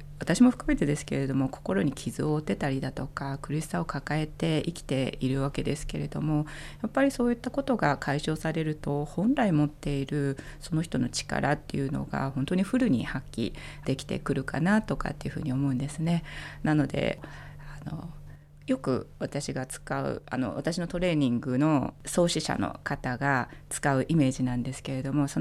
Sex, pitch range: female, 135-160 Hz